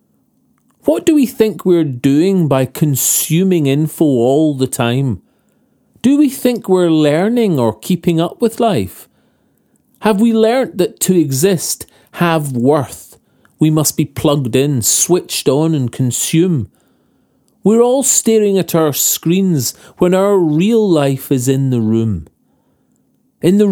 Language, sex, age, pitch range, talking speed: English, male, 40-59, 130-180 Hz, 140 wpm